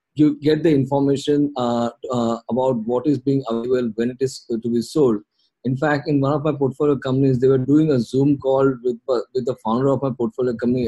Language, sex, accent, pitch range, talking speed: English, male, Indian, 120-140 Hz, 215 wpm